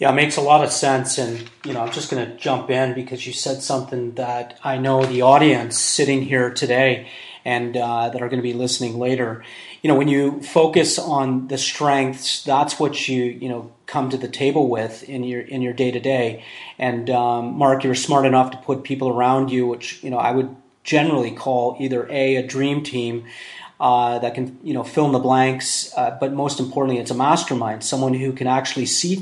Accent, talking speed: American, 215 wpm